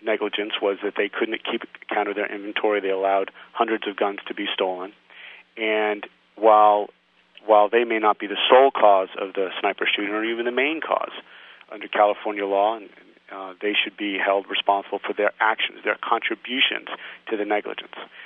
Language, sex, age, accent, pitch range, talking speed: English, male, 40-59, American, 100-110 Hz, 175 wpm